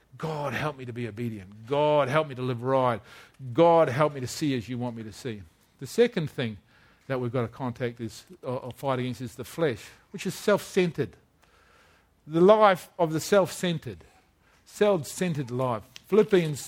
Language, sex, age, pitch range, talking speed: English, male, 50-69, 130-180 Hz, 180 wpm